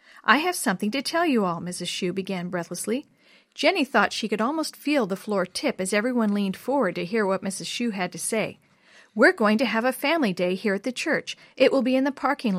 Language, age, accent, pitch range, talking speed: English, 50-69, American, 190-255 Hz, 235 wpm